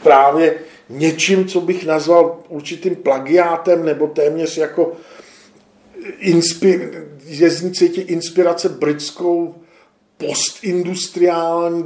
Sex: male